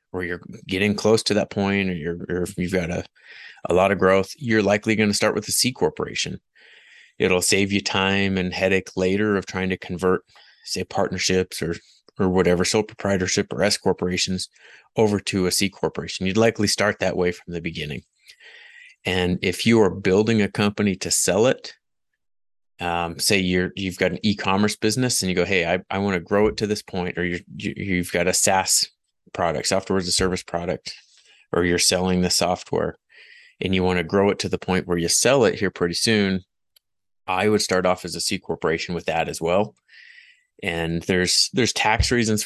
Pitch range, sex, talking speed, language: 90-105 Hz, male, 200 wpm, English